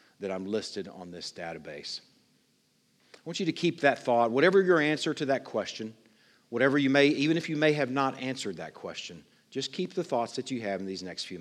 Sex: male